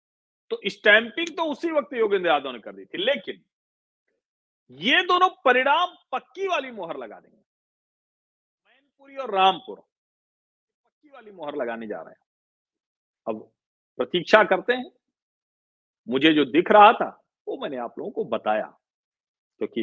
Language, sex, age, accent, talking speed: Hindi, male, 40-59, native, 140 wpm